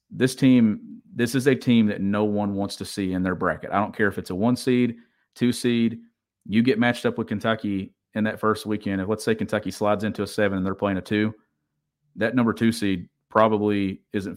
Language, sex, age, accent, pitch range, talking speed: English, male, 40-59, American, 100-115 Hz, 225 wpm